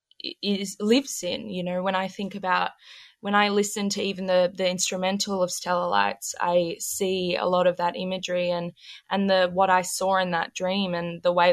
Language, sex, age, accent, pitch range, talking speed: English, female, 20-39, Australian, 180-200 Hz, 205 wpm